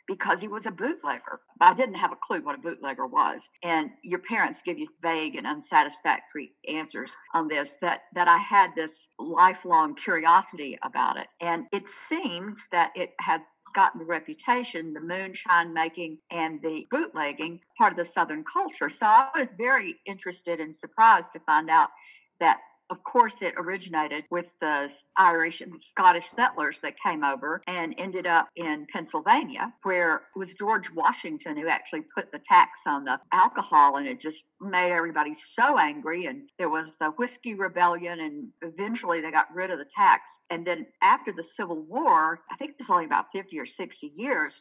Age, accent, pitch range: 50-69, American, 160-245 Hz